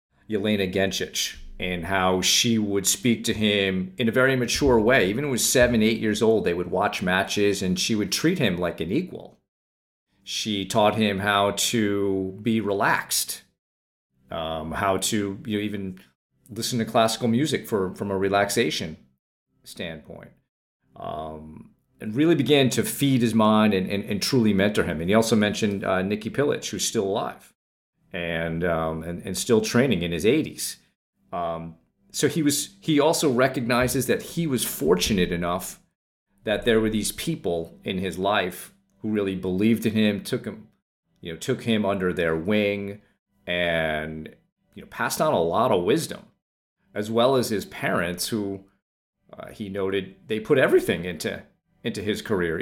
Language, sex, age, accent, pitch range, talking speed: English, male, 40-59, American, 90-115 Hz, 170 wpm